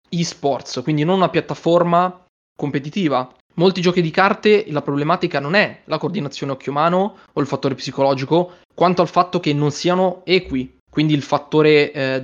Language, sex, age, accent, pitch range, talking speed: Italian, male, 20-39, native, 135-170 Hz, 160 wpm